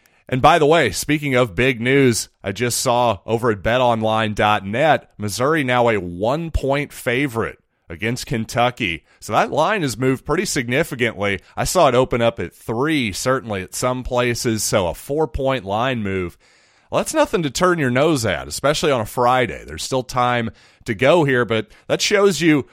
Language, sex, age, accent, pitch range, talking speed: English, male, 30-49, American, 110-140 Hz, 175 wpm